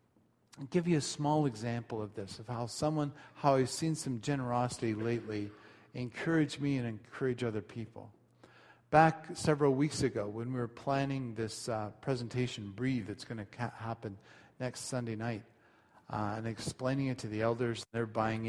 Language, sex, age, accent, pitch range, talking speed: English, male, 40-59, American, 110-130 Hz, 170 wpm